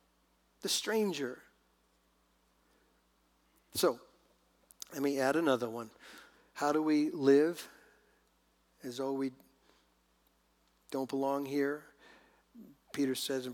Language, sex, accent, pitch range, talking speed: English, male, American, 130-190 Hz, 95 wpm